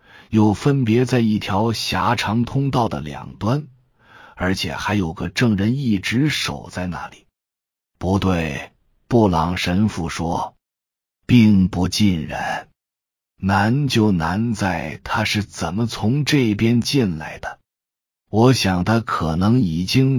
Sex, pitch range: male, 85-115 Hz